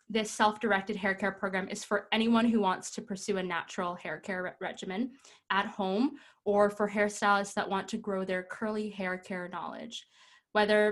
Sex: female